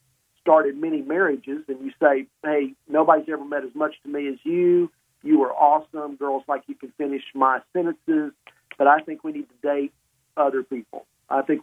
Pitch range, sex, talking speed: 130-165 Hz, male, 190 wpm